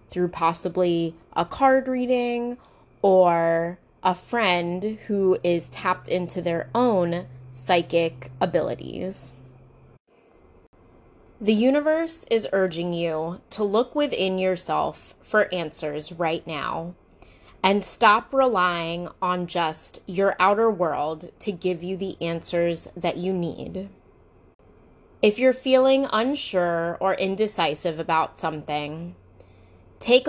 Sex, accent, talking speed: female, American, 105 wpm